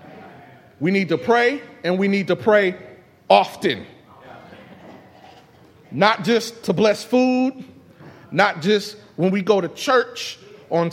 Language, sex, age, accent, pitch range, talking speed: English, male, 30-49, American, 170-225 Hz, 125 wpm